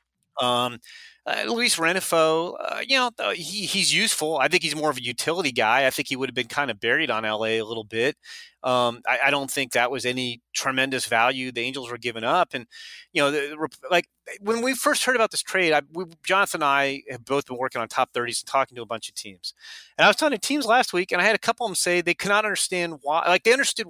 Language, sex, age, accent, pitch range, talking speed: English, male, 30-49, American, 135-180 Hz, 260 wpm